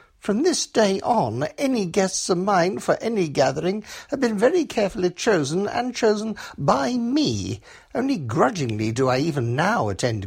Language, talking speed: English, 160 wpm